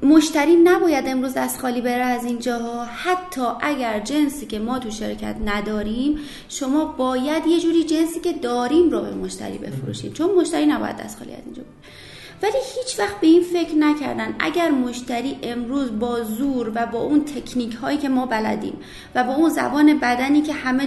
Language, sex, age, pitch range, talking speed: Persian, female, 30-49, 230-300 Hz, 180 wpm